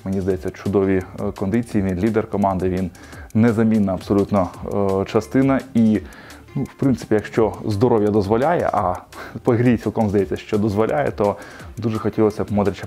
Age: 20-39